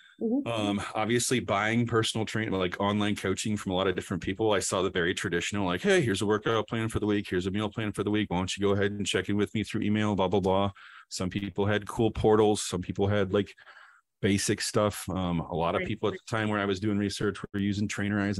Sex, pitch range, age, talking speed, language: male, 90-110 Hz, 30-49, 255 wpm, English